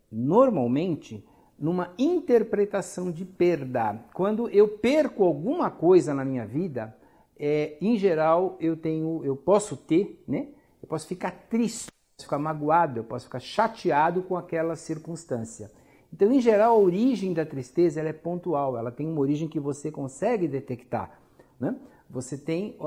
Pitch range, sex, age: 125-180 Hz, male, 60-79